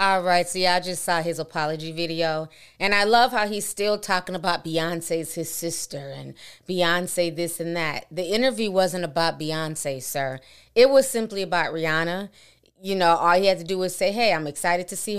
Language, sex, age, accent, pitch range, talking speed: English, female, 20-39, American, 160-190 Hz, 200 wpm